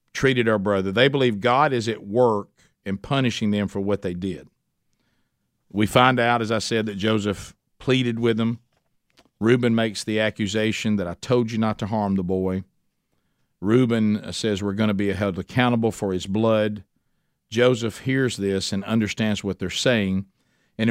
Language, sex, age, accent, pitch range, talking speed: English, male, 50-69, American, 105-130 Hz, 170 wpm